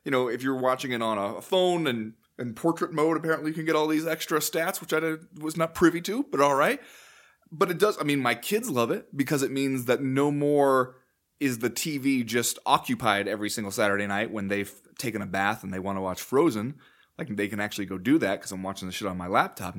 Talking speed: 245 wpm